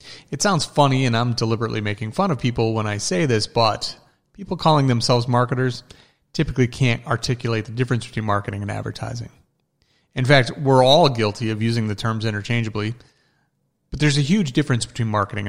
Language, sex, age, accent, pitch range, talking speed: English, male, 40-59, American, 110-135 Hz, 175 wpm